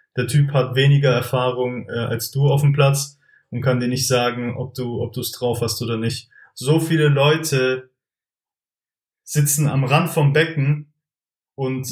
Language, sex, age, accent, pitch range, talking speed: German, male, 20-39, German, 120-145 Hz, 165 wpm